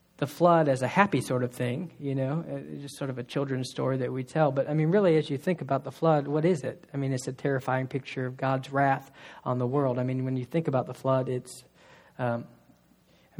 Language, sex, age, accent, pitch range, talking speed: English, male, 40-59, American, 130-150 Hz, 240 wpm